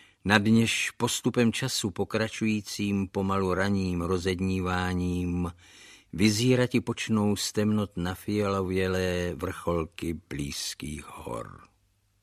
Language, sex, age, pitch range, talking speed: Czech, male, 50-69, 90-115 Hz, 85 wpm